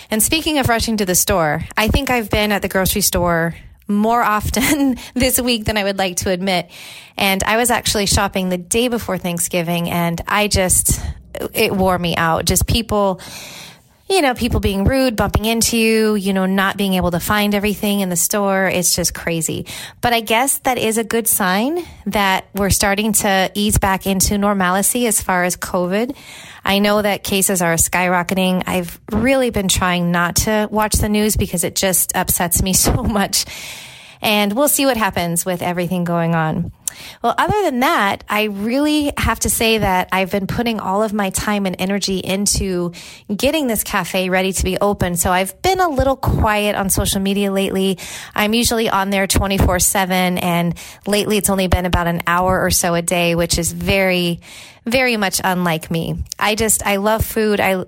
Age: 30-49